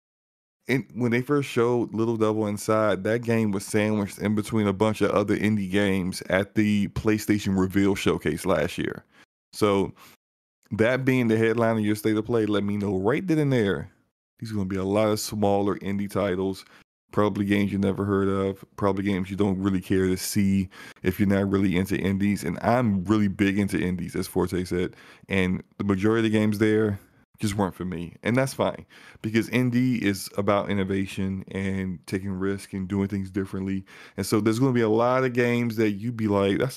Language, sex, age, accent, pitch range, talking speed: English, male, 20-39, American, 100-115 Hz, 205 wpm